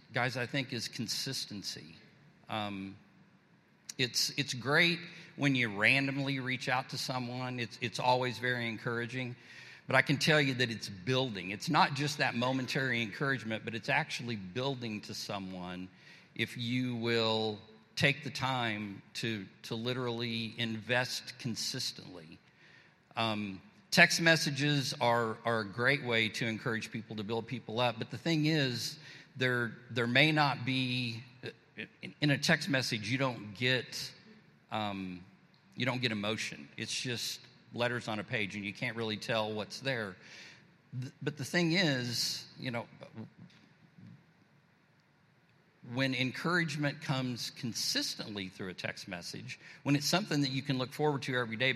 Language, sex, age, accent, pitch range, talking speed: English, male, 50-69, American, 110-135 Hz, 145 wpm